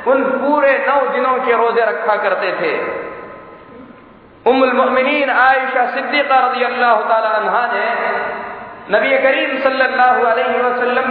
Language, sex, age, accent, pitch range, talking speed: Hindi, male, 50-69, native, 235-280 Hz, 105 wpm